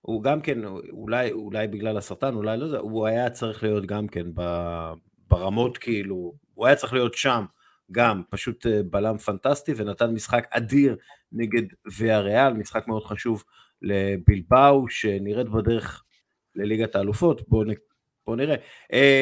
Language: Hebrew